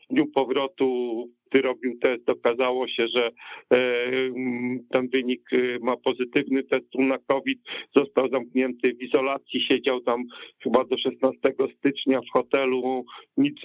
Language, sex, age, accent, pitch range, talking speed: Polish, male, 50-69, native, 125-135 Hz, 125 wpm